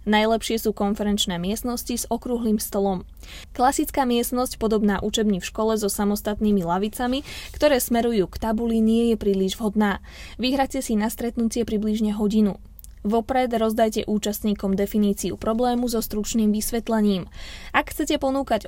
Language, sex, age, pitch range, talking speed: Slovak, female, 20-39, 205-245 Hz, 130 wpm